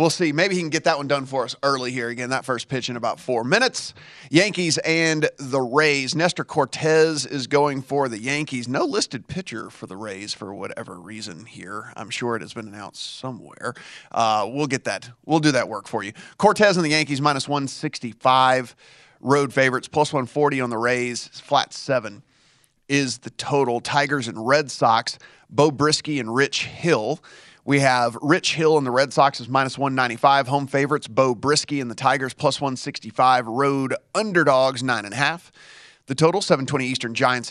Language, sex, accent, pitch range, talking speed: English, male, American, 125-150 Hz, 185 wpm